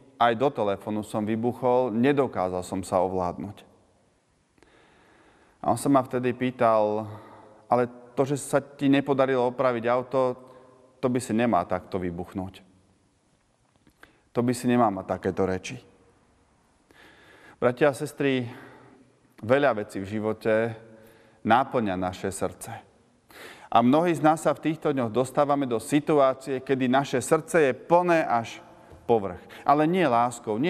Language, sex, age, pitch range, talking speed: Slovak, male, 30-49, 105-135 Hz, 135 wpm